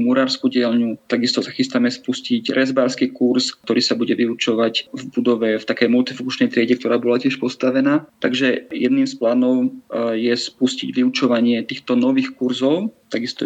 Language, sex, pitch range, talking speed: Slovak, male, 120-135 Hz, 145 wpm